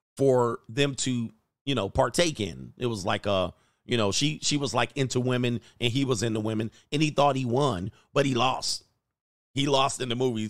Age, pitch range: 40-59, 115-145 Hz